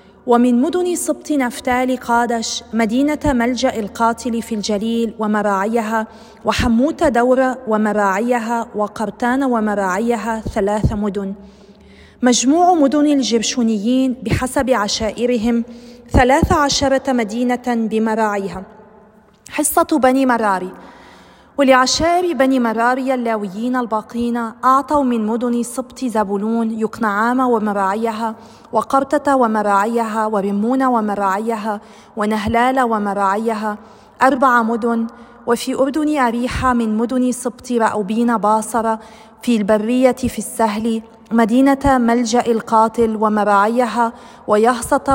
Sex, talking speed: female, 90 wpm